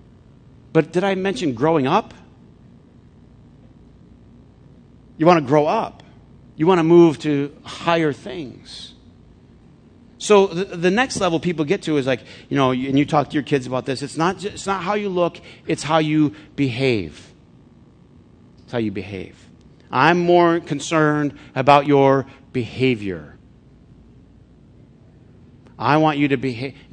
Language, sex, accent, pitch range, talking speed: English, male, American, 120-150 Hz, 140 wpm